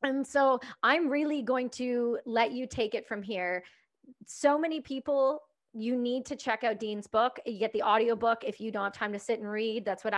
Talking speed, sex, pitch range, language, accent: 225 wpm, female, 215-260 Hz, English, American